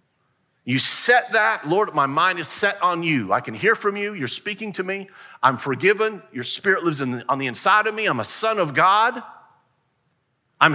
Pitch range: 135-190 Hz